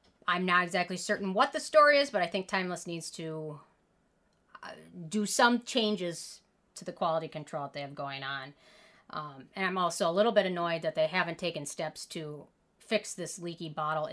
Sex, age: female, 30-49